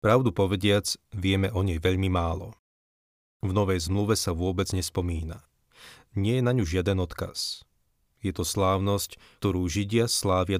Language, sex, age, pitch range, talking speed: Slovak, male, 30-49, 85-100 Hz, 140 wpm